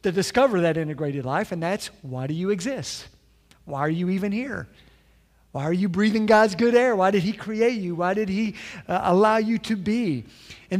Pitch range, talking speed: 160-210 Hz, 205 wpm